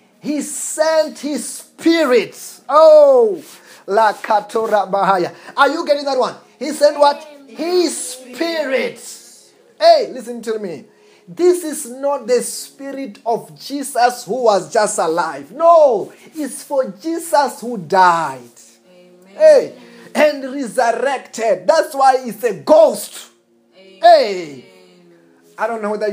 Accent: South African